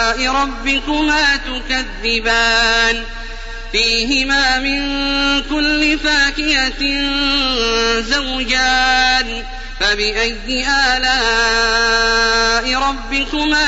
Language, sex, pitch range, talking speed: Arabic, male, 230-275 Hz, 45 wpm